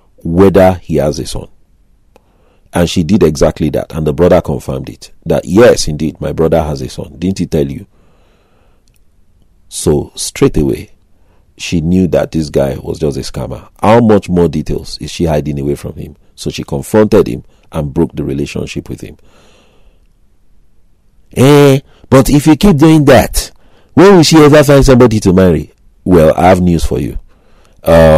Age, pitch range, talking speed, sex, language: 40-59, 75-95 Hz, 175 wpm, male, English